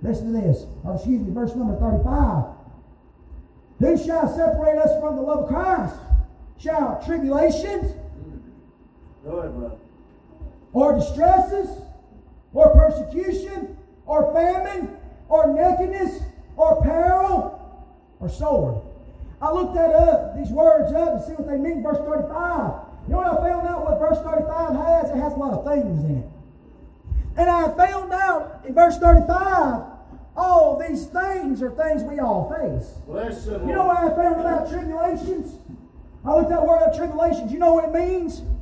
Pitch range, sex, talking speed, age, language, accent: 305-345 Hz, male, 155 wpm, 30-49, English, American